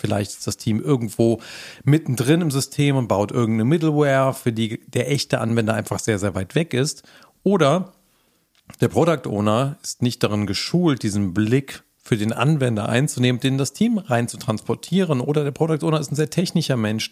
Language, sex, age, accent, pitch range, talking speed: German, male, 40-59, German, 115-150 Hz, 180 wpm